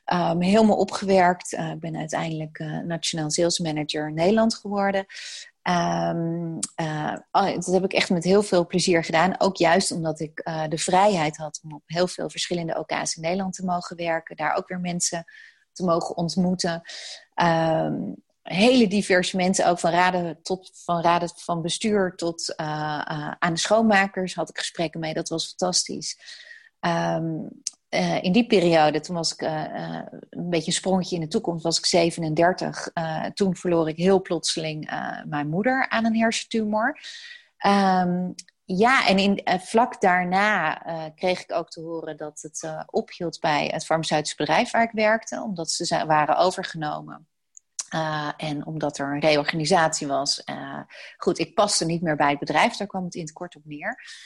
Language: Dutch